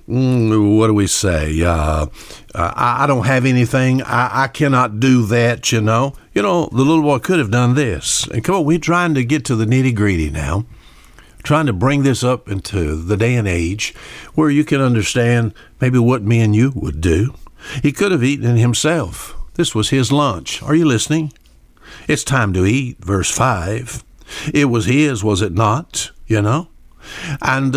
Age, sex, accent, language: 60-79, male, American, English